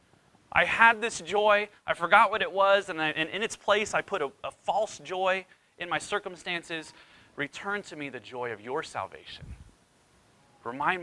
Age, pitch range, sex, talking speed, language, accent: 30-49, 120-165 Hz, male, 170 wpm, English, American